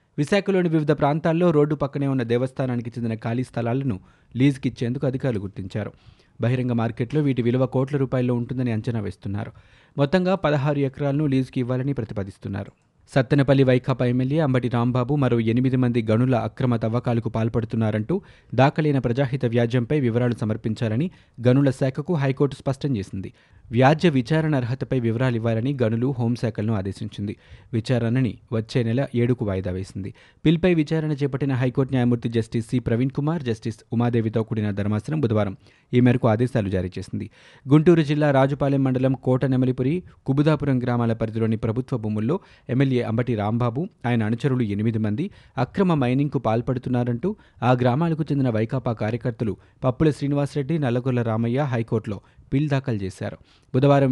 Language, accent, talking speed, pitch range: Telugu, native, 130 wpm, 115-140 Hz